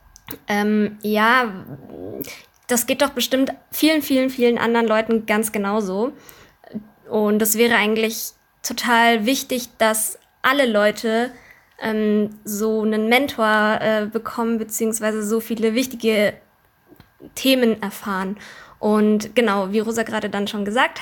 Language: German